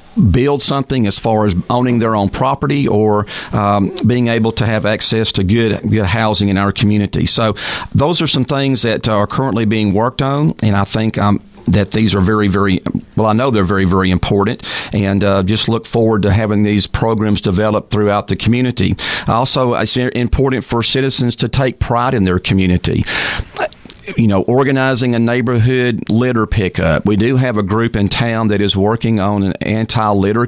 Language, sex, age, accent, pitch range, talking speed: English, male, 40-59, American, 100-120 Hz, 185 wpm